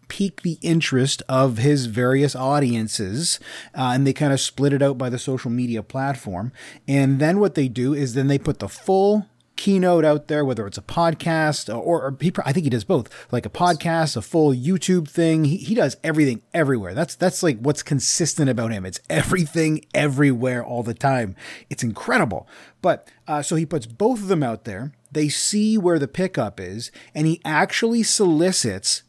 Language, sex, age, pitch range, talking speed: English, male, 30-49, 125-165 Hz, 190 wpm